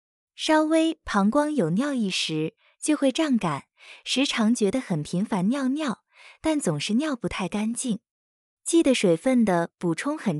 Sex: female